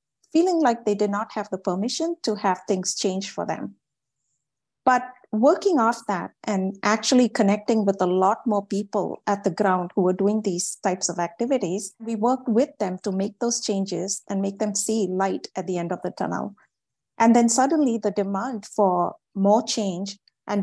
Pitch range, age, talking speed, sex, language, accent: 190-225 Hz, 50-69, 185 wpm, female, English, Indian